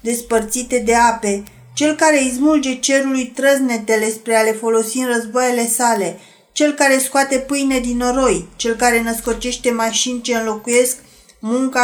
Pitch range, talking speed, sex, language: 225-270 Hz, 135 wpm, female, Romanian